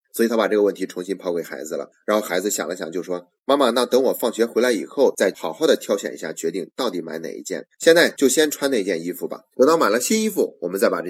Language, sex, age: Chinese, male, 30-49